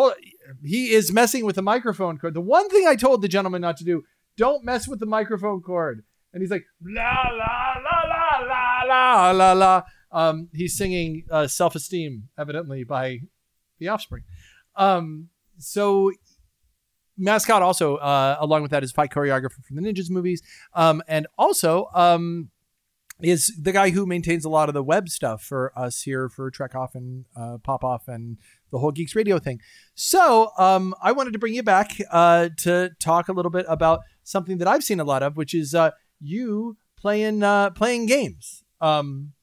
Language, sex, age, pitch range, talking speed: English, male, 30-49, 150-210 Hz, 185 wpm